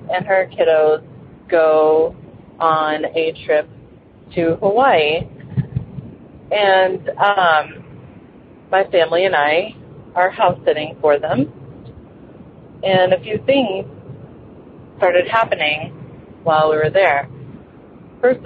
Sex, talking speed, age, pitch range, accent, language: female, 100 wpm, 30-49, 150-180 Hz, American, English